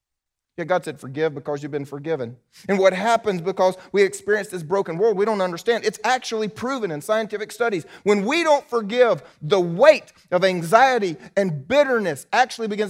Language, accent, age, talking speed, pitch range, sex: English, American, 30-49, 175 wpm, 145-220 Hz, male